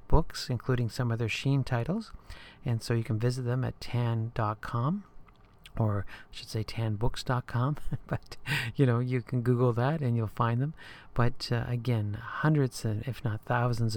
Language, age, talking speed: English, 40-59, 170 wpm